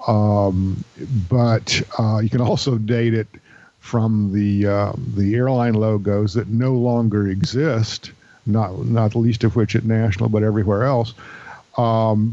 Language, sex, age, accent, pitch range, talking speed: English, male, 50-69, American, 105-125 Hz, 145 wpm